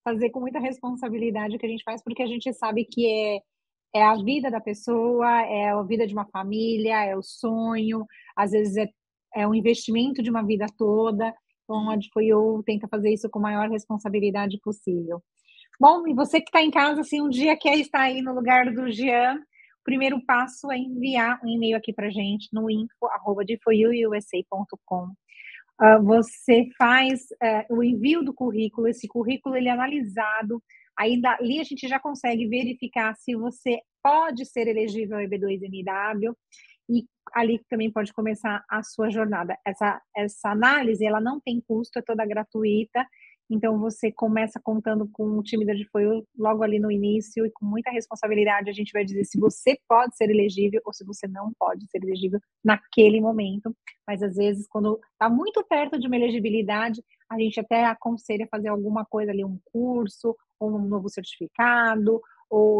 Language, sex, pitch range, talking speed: Portuguese, female, 210-240 Hz, 175 wpm